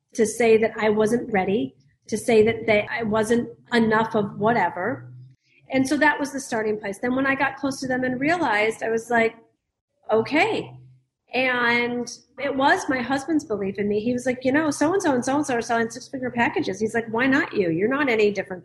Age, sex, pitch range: 40-59, female, 215-260 Hz